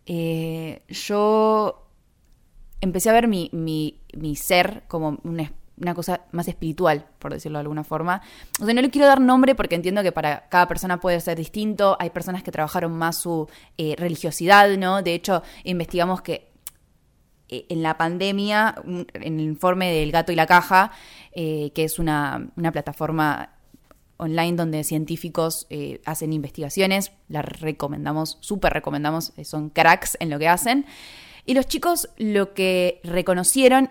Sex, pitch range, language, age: female, 160-205 Hz, Spanish, 20-39